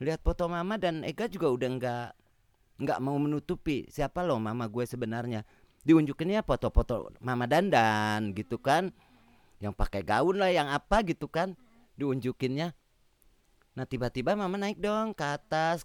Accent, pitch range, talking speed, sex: native, 115-170 Hz, 145 wpm, male